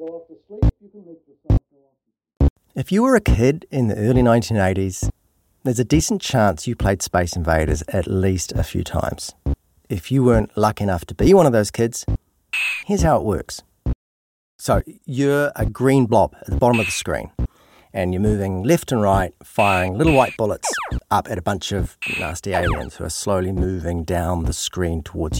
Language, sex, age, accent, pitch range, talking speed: English, male, 30-49, Australian, 90-130 Hz, 170 wpm